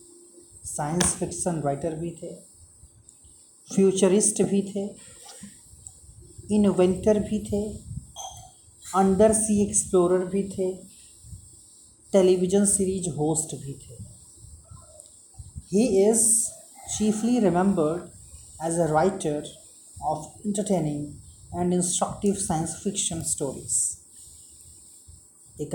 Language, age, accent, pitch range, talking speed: Hindi, 30-49, native, 135-195 Hz, 85 wpm